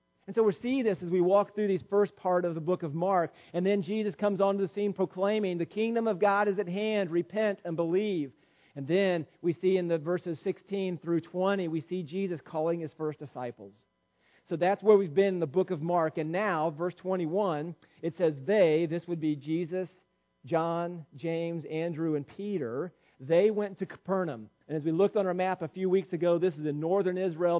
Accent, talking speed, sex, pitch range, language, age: American, 215 wpm, male, 155-190 Hz, English, 40-59